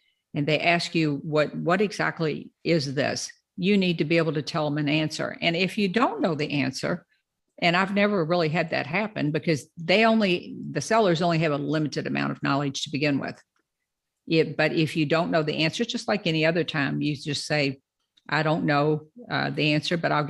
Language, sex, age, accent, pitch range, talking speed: English, female, 50-69, American, 150-185 Hz, 210 wpm